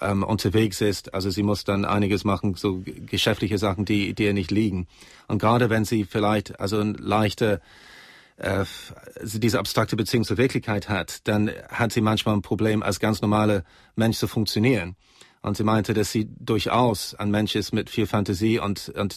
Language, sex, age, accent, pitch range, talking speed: German, male, 30-49, German, 105-115 Hz, 180 wpm